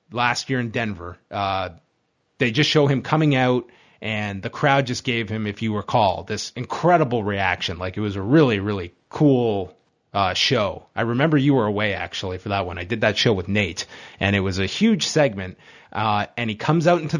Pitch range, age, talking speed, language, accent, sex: 105-135 Hz, 30-49, 205 wpm, English, American, male